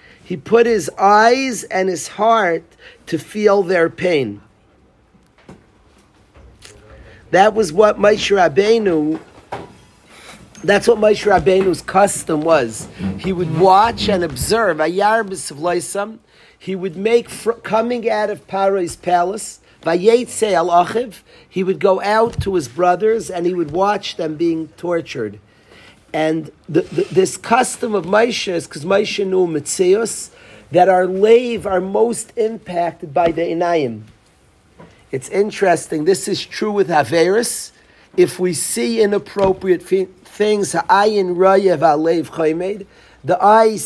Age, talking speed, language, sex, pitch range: 50-69, 120 wpm, English, male, 170-210 Hz